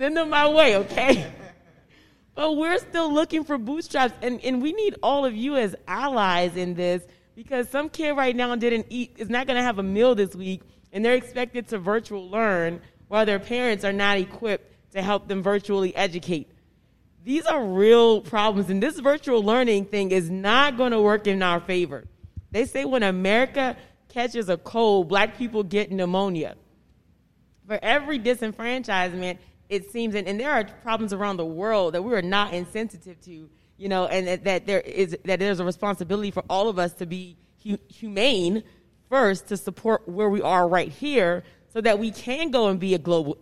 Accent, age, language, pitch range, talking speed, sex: American, 30-49, English, 180-235 Hz, 185 wpm, female